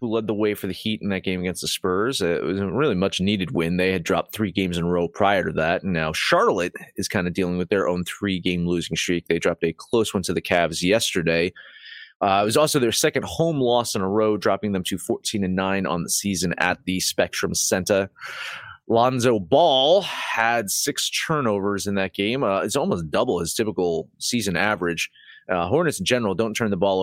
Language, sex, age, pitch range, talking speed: English, male, 30-49, 90-110 Hz, 220 wpm